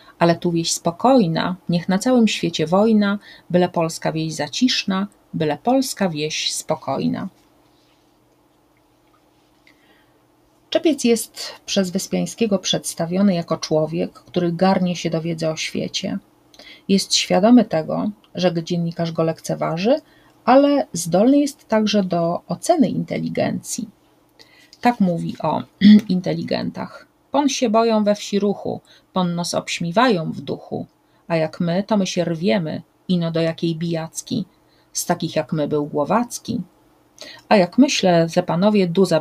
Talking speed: 125 wpm